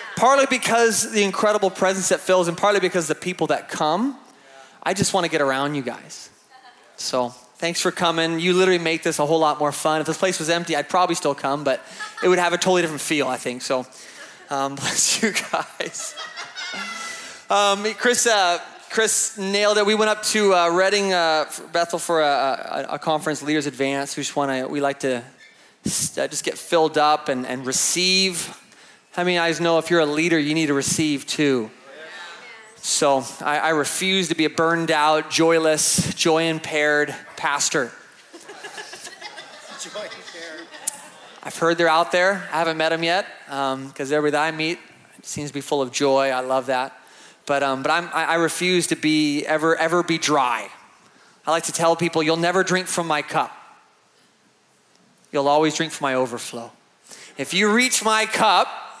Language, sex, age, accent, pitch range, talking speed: English, male, 20-39, American, 145-185 Hz, 180 wpm